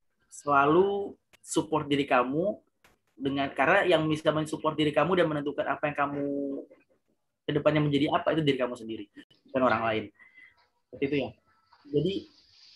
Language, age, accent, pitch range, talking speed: Indonesian, 20-39, native, 140-165 Hz, 140 wpm